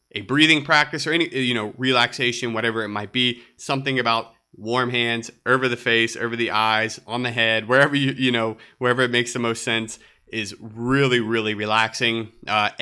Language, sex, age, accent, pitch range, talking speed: English, male, 30-49, American, 110-135 Hz, 185 wpm